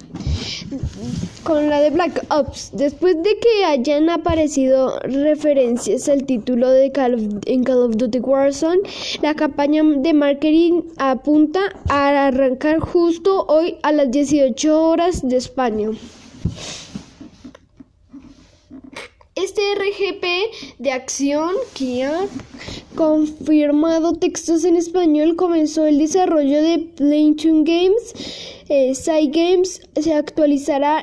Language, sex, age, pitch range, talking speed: Spanish, female, 10-29, 270-335 Hz, 100 wpm